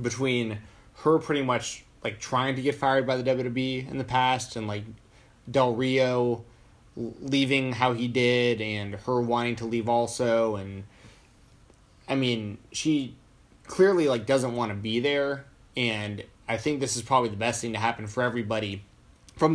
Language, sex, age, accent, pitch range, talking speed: English, male, 20-39, American, 110-130 Hz, 165 wpm